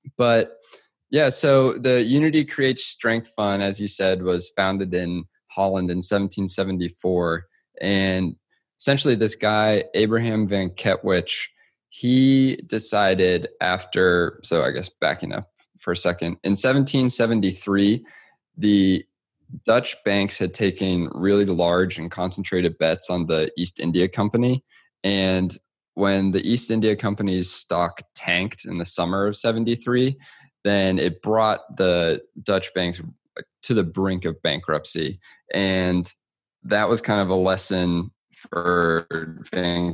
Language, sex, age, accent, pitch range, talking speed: English, male, 20-39, American, 85-110 Hz, 130 wpm